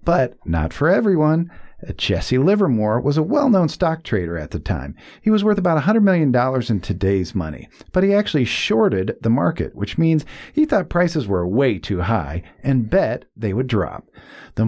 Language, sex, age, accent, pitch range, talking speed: English, male, 50-69, American, 105-170 Hz, 180 wpm